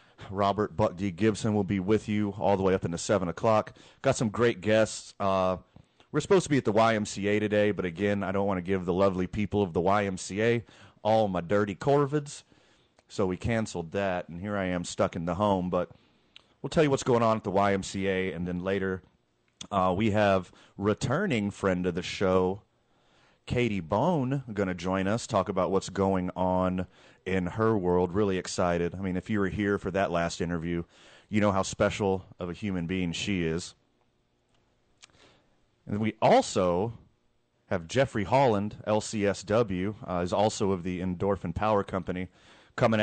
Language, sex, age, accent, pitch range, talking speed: English, male, 30-49, American, 95-110 Hz, 180 wpm